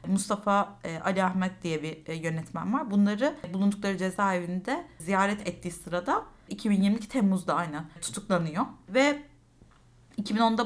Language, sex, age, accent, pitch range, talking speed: Turkish, female, 30-49, native, 175-225 Hz, 105 wpm